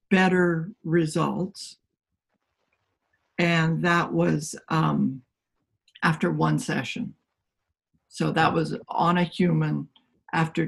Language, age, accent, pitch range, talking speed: English, 60-79, American, 155-195 Hz, 90 wpm